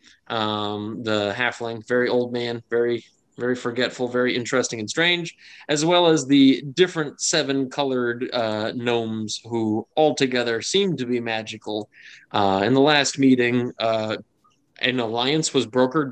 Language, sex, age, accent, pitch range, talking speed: English, male, 20-39, American, 110-135 Hz, 140 wpm